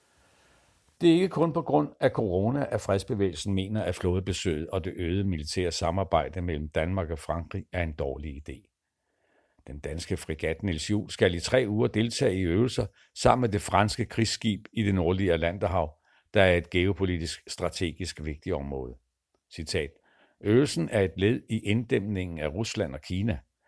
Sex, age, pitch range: male, 60-79, 85-110 Hz